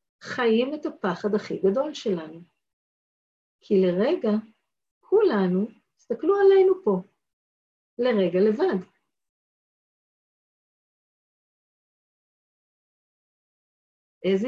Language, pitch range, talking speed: Hebrew, 175-235 Hz, 60 wpm